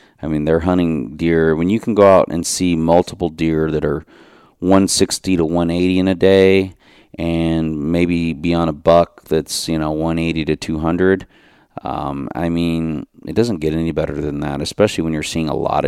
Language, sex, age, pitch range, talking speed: English, male, 40-59, 75-90 Hz, 190 wpm